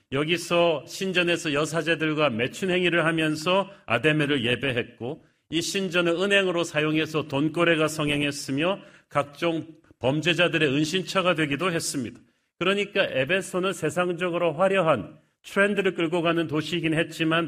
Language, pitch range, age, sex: Korean, 150-180 Hz, 40-59, male